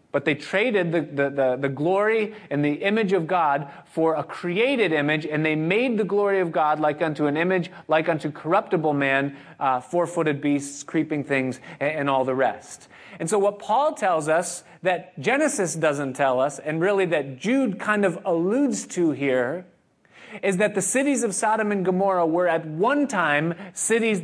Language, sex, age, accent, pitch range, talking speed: English, male, 30-49, American, 155-205 Hz, 185 wpm